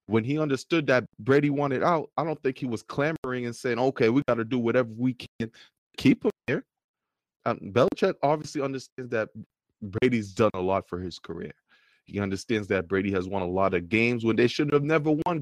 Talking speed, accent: 210 wpm, American